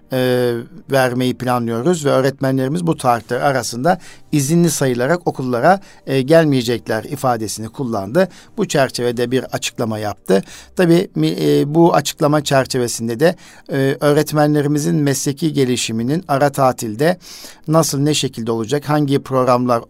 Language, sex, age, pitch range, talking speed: Turkish, male, 50-69, 125-160 Hz, 115 wpm